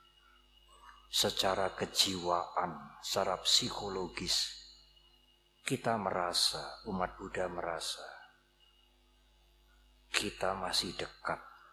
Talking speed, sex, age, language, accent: 60 wpm, male, 50-69, Indonesian, native